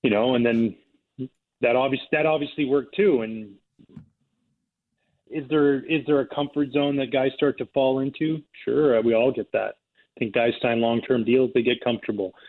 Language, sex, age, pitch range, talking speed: English, male, 30-49, 115-125 Hz, 185 wpm